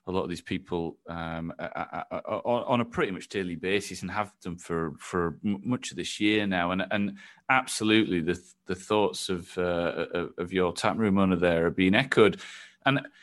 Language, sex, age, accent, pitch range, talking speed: English, male, 30-49, British, 100-135 Hz, 180 wpm